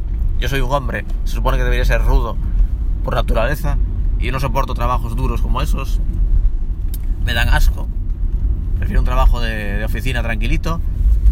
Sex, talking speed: male, 160 wpm